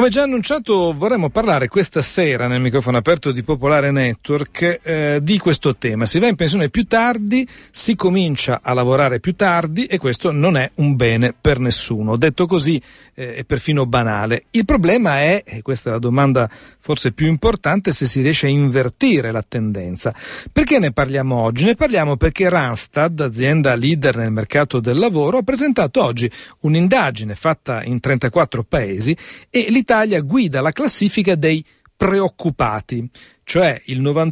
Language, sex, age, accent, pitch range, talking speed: Italian, male, 40-59, native, 125-180 Hz, 160 wpm